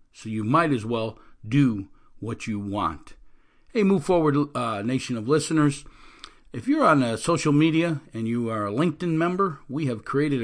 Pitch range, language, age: 115-155 Hz, English, 50-69